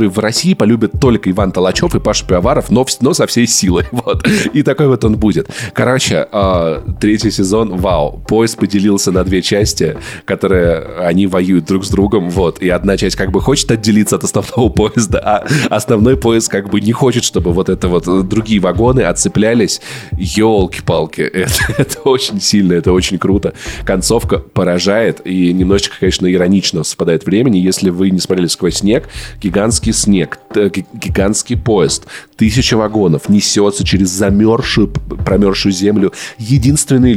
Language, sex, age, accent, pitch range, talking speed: Russian, male, 20-39, native, 95-125 Hz, 155 wpm